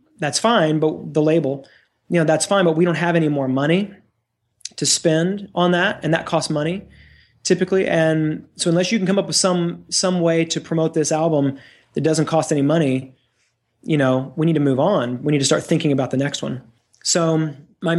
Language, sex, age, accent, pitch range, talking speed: English, male, 30-49, American, 145-180 Hz, 210 wpm